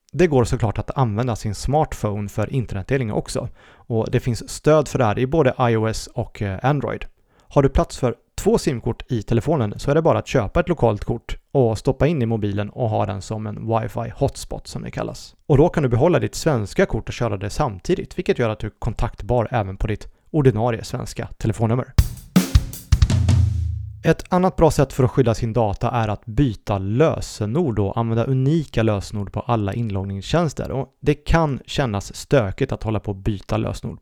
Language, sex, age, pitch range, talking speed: Swedish, male, 30-49, 105-135 Hz, 190 wpm